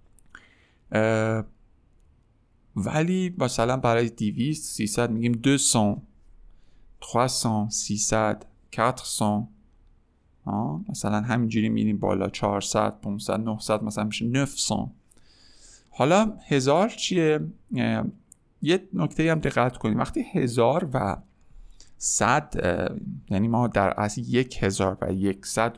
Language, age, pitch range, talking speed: Persian, 50-69, 105-125 Hz, 100 wpm